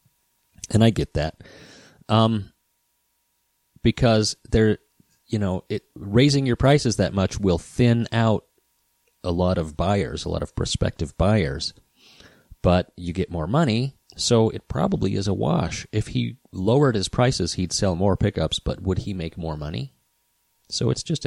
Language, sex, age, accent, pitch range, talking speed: English, male, 30-49, American, 85-115 Hz, 160 wpm